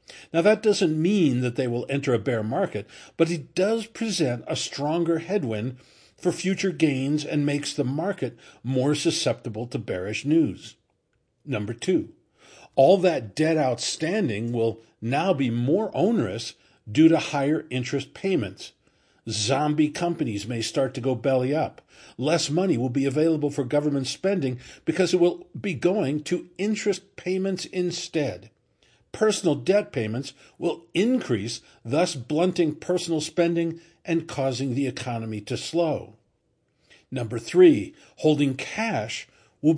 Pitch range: 130-175 Hz